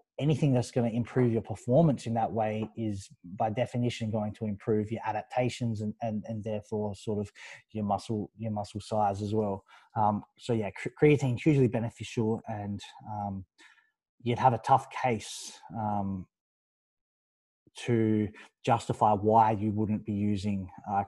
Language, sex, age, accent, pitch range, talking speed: English, male, 20-39, Australian, 110-130 Hz, 150 wpm